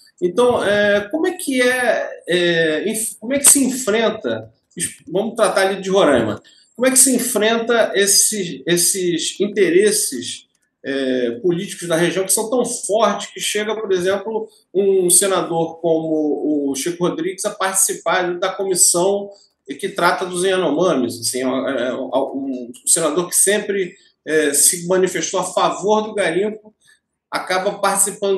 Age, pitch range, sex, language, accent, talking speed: 40-59, 175-235 Hz, male, Portuguese, Brazilian, 120 wpm